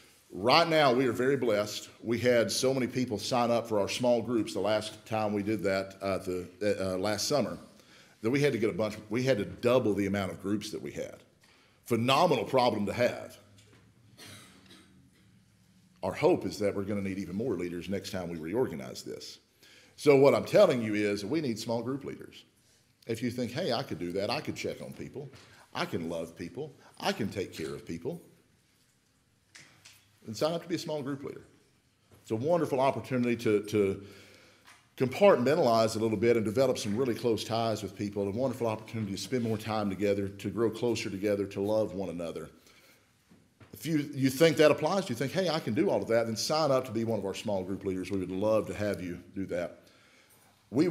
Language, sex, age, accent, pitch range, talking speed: English, male, 50-69, American, 100-125 Hz, 210 wpm